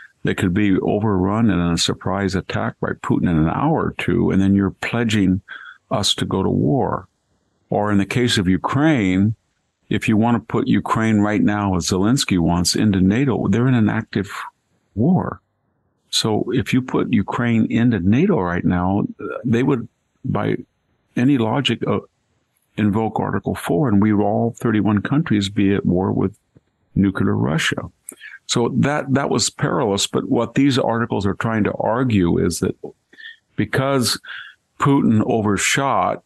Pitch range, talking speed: 95-110 Hz, 155 wpm